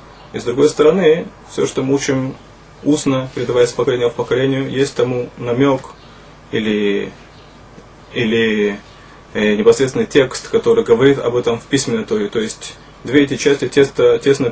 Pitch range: 125-155 Hz